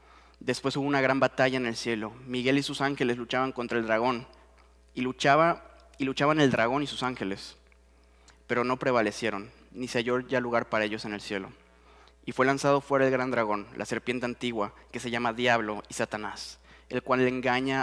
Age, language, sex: 20-39, English, male